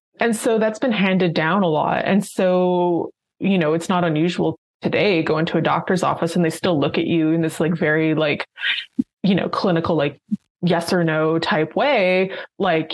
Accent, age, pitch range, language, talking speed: American, 20-39, 165-195 Hz, English, 195 wpm